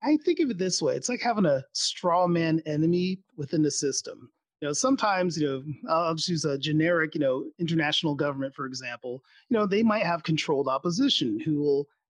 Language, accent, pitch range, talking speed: English, American, 150-210 Hz, 205 wpm